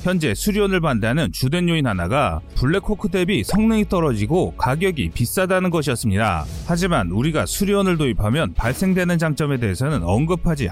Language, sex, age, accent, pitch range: Korean, male, 30-49, native, 130-200 Hz